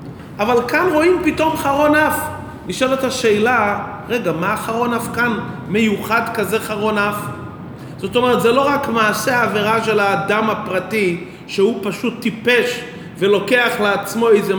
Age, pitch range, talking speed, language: 30-49, 200-250 Hz, 135 wpm, Hebrew